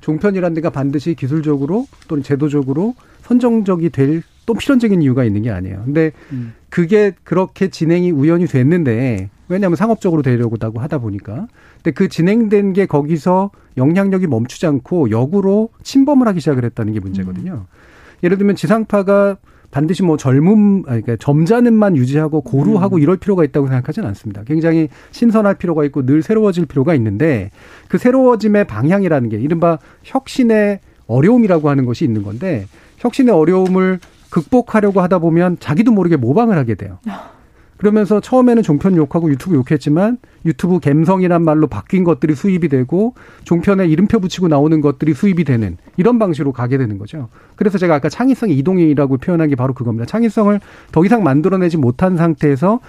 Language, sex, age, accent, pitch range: Korean, male, 40-59, native, 140-200 Hz